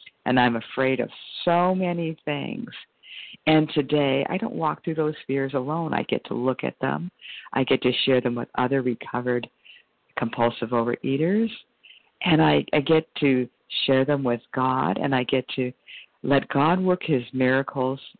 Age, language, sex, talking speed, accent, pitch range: 50-69, English, female, 165 wpm, American, 125-155 Hz